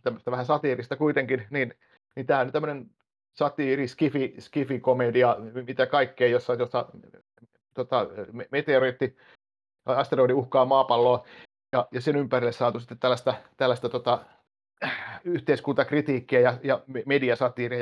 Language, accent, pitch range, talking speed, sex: Finnish, native, 125-170 Hz, 110 wpm, male